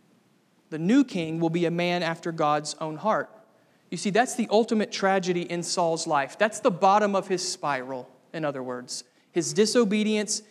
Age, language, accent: 30-49, English, American